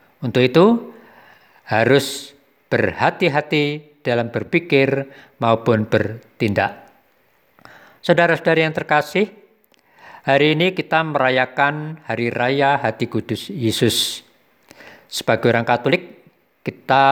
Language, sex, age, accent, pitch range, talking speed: Indonesian, male, 50-69, native, 120-155 Hz, 85 wpm